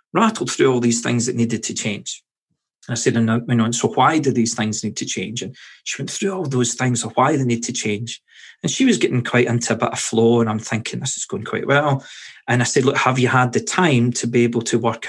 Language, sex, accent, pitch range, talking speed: English, male, British, 115-135 Hz, 260 wpm